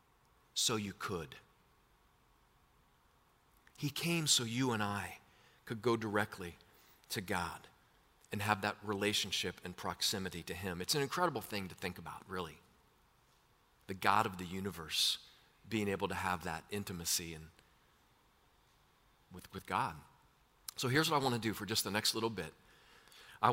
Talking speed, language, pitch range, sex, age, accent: 150 wpm, English, 100-140 Hz, male, 40-59, American